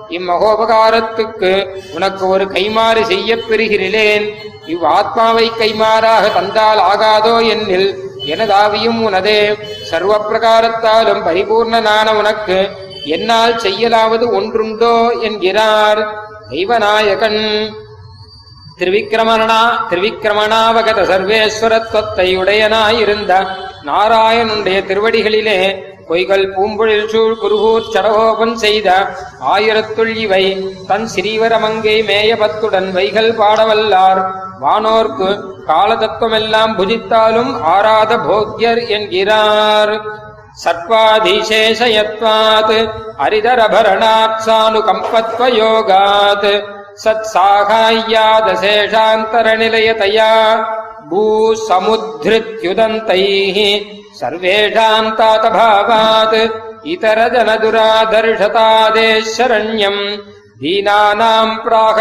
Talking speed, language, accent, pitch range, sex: 45 wpm, Tamil, native, 200-225 Hz, male